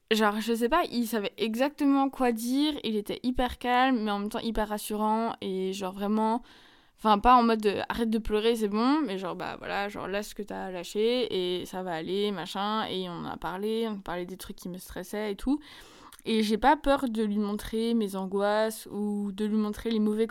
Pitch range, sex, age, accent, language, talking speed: 200-250 Hz, female, 20-39, French, French, 225 wpm